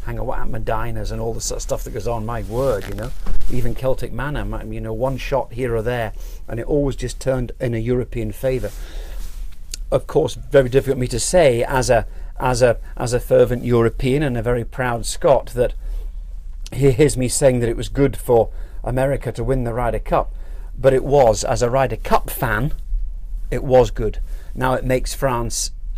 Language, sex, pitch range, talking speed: English, male, 105-135 Hz, 210 wpm